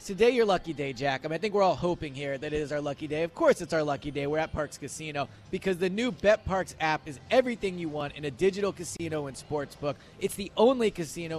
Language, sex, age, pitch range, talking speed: English, male, 30-49, 145-190 Hz, 260 wpm